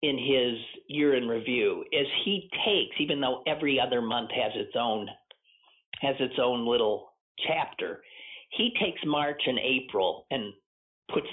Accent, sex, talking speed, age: American, male, 150 wpm, 50-69